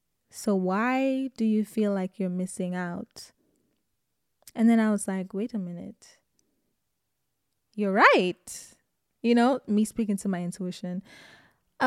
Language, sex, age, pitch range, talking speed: English, female, 10-29, 205-260 Hz, 135 wpm